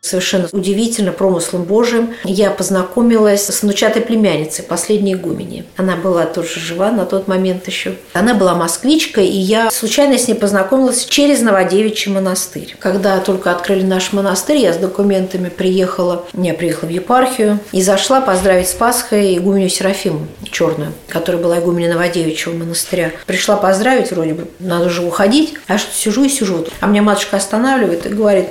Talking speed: 165 wpm